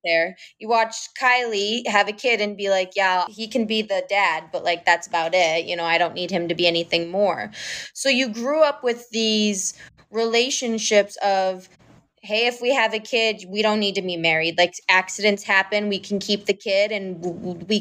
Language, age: English, 20-39